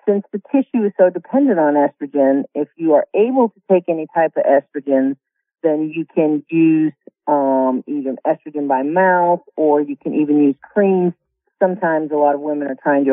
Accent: American